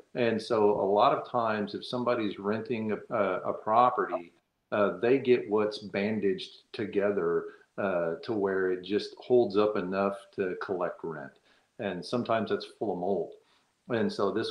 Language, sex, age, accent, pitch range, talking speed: English, male, 50-69, American, 95-120 Hz, 160 wpm